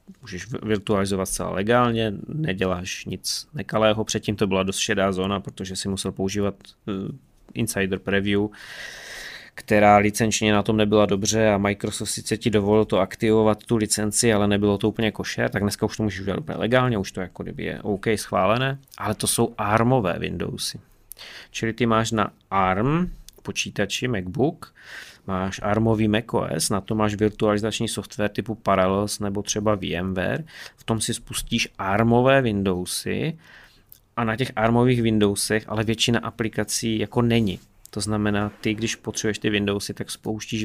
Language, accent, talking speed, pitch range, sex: Czech, native, 155 wpm, 100-115 Hz, male